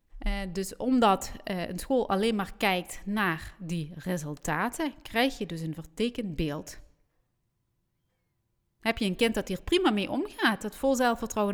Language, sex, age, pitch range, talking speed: Dutch, female, 30-49, 175-240 Hz, 155 wpm